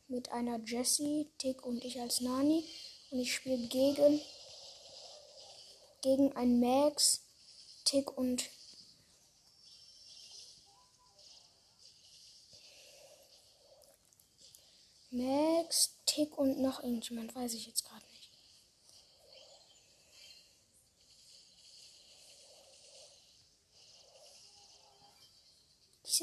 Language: German